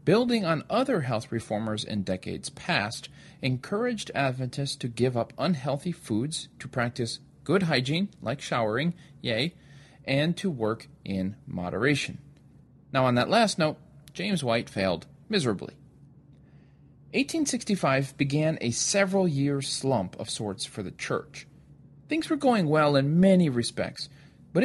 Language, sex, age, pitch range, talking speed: English, male, 40-59, 120-165 Hz, 130 wpm